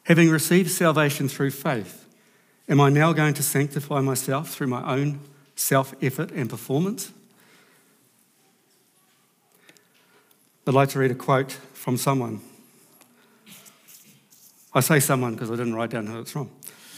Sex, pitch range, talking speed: male, 130-165 Hz, 130 wpm